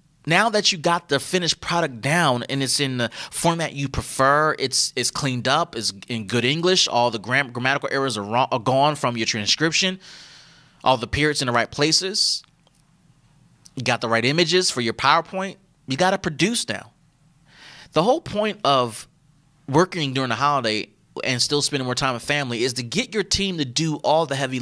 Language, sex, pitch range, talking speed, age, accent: English, male, 130-170 Hz, 190 wpm, 30-49, American